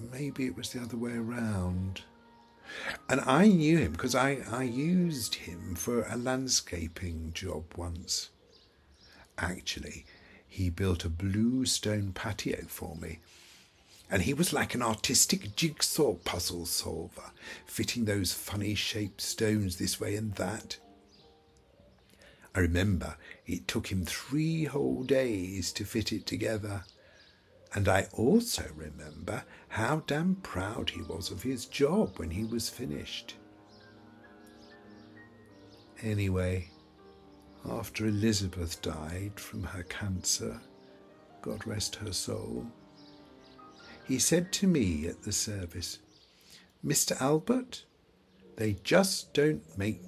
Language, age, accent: English, 60-79, British